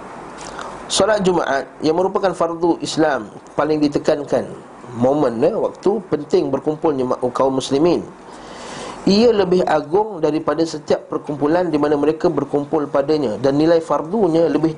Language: Malay